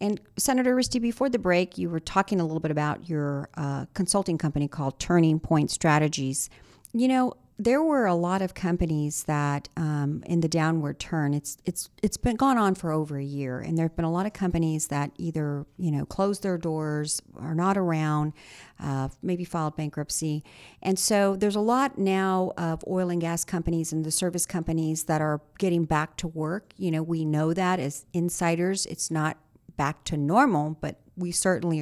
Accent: American